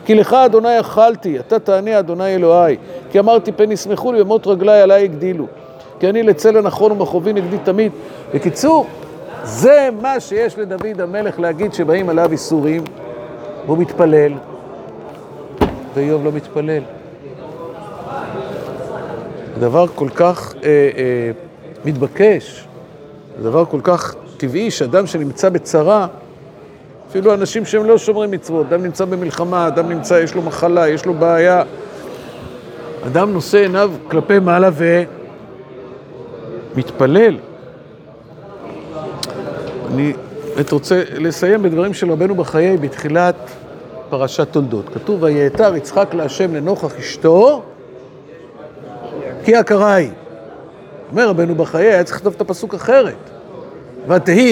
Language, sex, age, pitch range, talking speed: Hebrew, male, 50-69, 155-205 Hz, 115 wpm